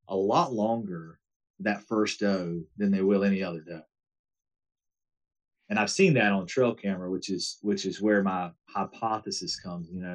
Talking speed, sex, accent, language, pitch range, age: 170 wpm, male, American, English, 100-115 Hz, 30-49